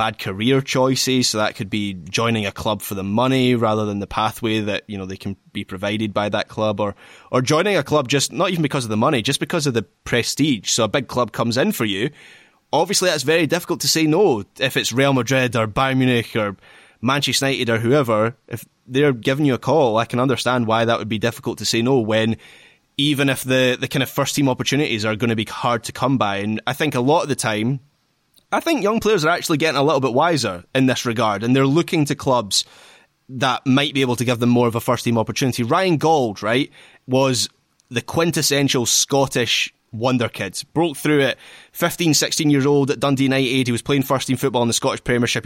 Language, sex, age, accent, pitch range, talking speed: English, male, 20-39, British, 115-140 Hz, 230 wpm